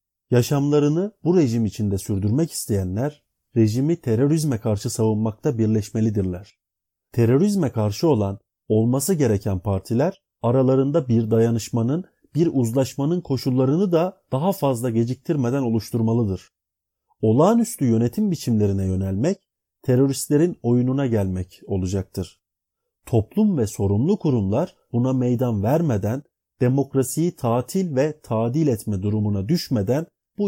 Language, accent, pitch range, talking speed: Turkish, native, 105-150 Hz, 100 wpm